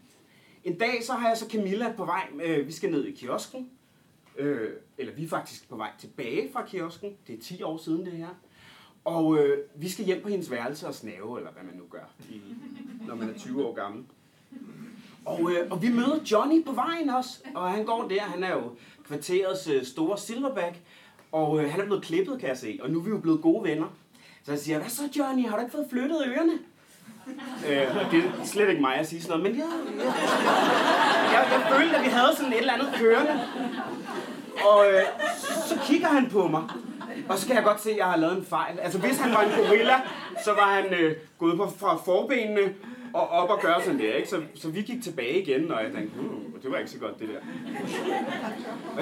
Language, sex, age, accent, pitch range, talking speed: Danish, male, 30-49, native, 185-260 Hz, 215 wpm